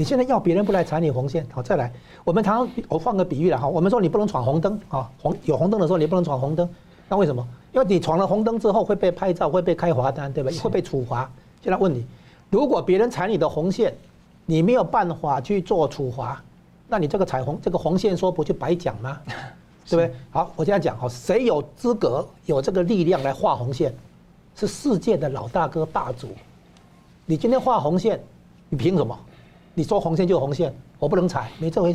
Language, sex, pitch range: Chinese, male, 140-190 Hz